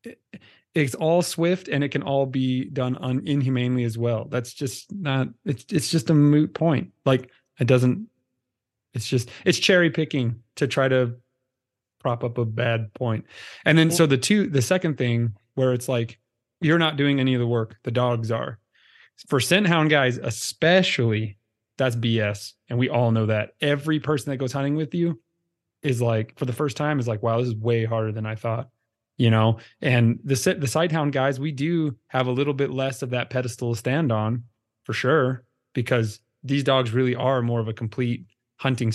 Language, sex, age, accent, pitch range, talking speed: English, male, 30-49, American, 120-150 Hz, 195 wpm